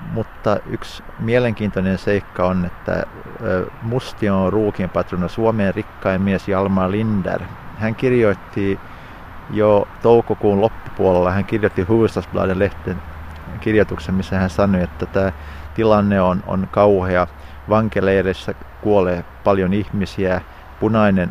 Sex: male